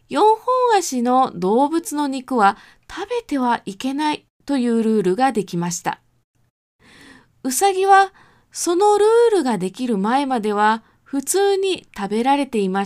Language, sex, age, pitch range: Japanese, female, 20-39, 200-300 Hz